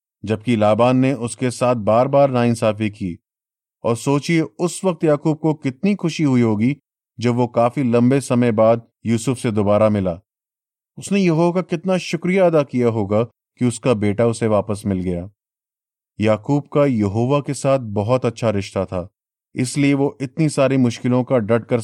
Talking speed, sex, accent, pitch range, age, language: 170 wpm, male, native, 110-135 Hz, 30-49, Hindi